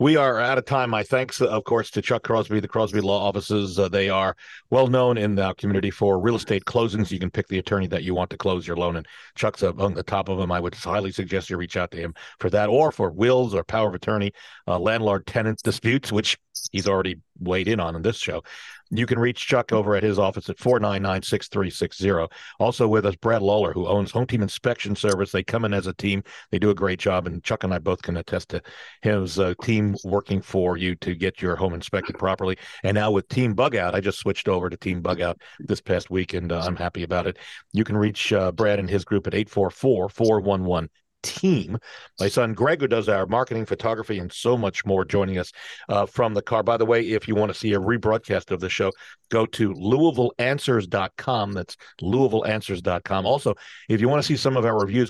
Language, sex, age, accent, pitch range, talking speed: English, male, 50-69, American, 95-110 Hz, 240 wpm